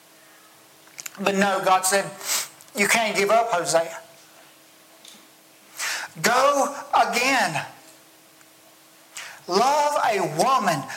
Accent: American